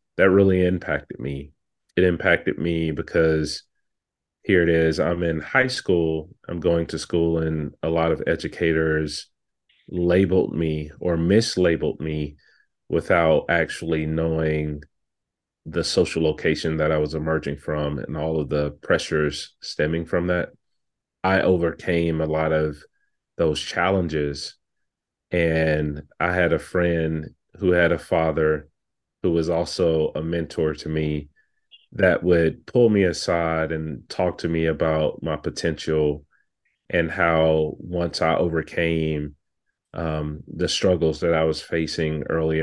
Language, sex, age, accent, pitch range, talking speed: English, male, 30-49, American, 75-85 Hz, 135 wpm